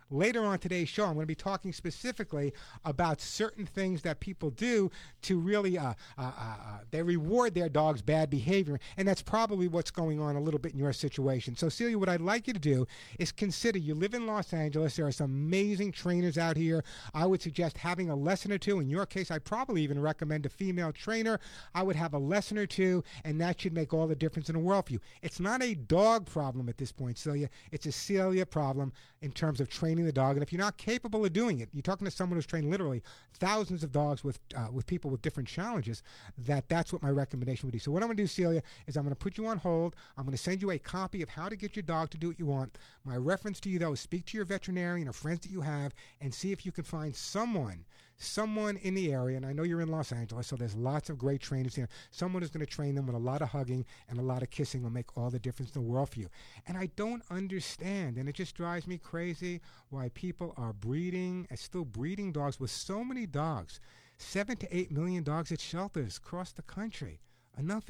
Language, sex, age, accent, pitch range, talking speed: English, male, 50-69, American, 140-190 Hz, 245 wpm